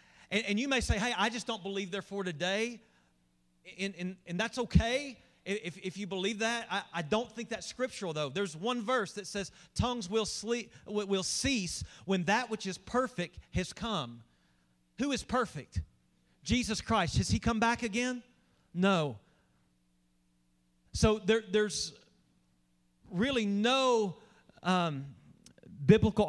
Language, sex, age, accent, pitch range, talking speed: English, male, 40-59, American, 160-225 Hz, 145 wpm